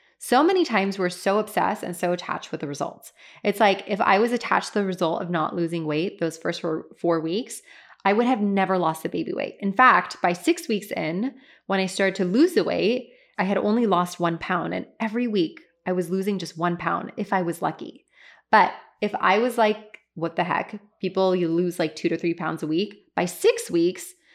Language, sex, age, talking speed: English, female, 20-39, 220 wpm